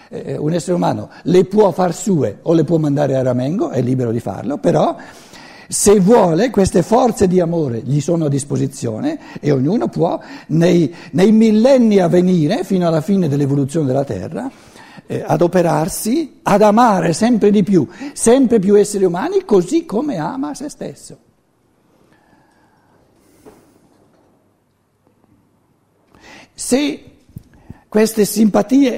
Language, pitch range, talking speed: Italian, 165-230 Hz, 130 wpm